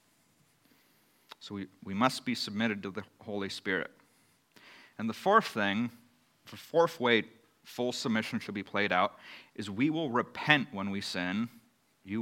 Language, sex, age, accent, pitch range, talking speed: English, male, 40-59, American, 100-120 Hz, 150 wpm